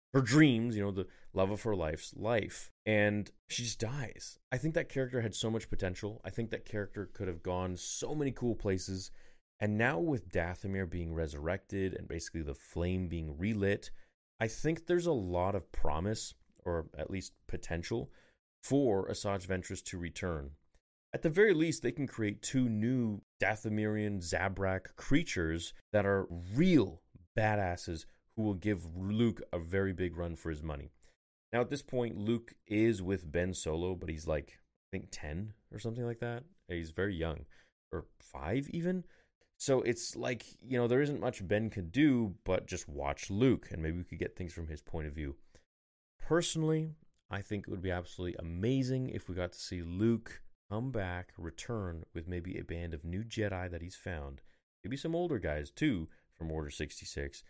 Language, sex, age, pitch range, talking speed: English, male, 30-49, 85-115 Hz, 180 wpm